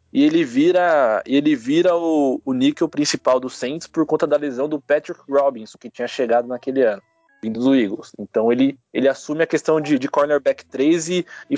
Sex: male